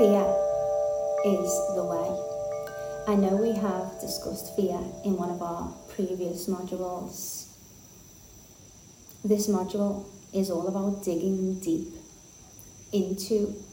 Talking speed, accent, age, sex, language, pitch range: 105 wpm, British, 30-49, female, English, 165-195 Hz